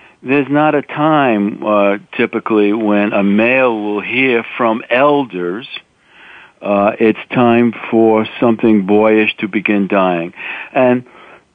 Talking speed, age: 120 wpm, 50-69